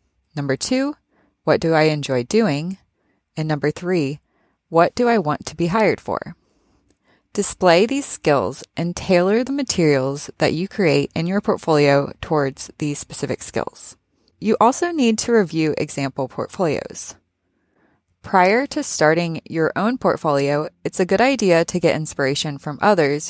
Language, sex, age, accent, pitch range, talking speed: English, female, 20-39, American, 145-195 Hz, 145 wpm